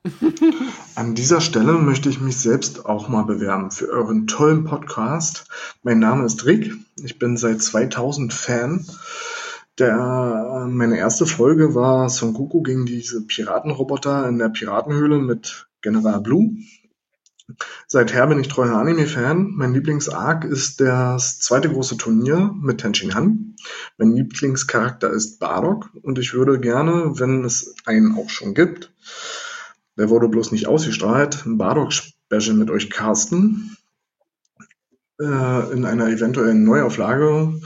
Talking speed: 130 wpm